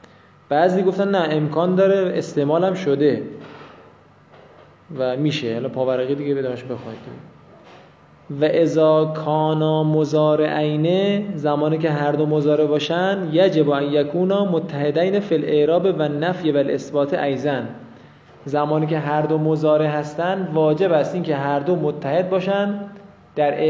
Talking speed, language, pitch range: 120 wpm, Persian, 145-180 Hz